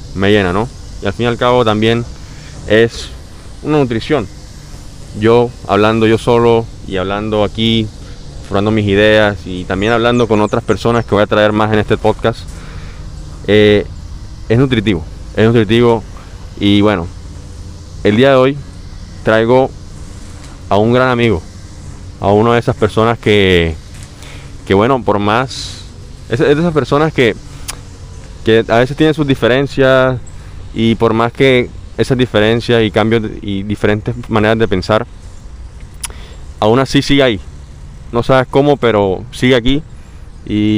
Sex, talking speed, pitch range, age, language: male, 145 wpm, 90-115 Hz, 20-39, Spanish